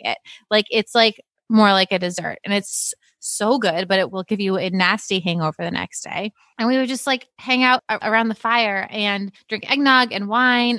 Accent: American